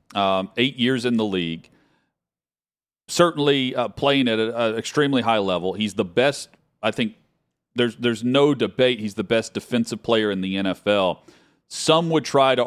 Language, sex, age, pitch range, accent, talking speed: English, male, 40-59, 95-120 Hz, American, 165 wpm